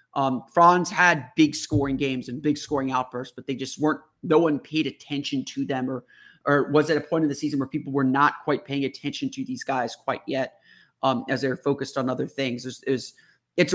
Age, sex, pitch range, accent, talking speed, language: 30-49, male, 135-160 Hz, American, 230 wpm, English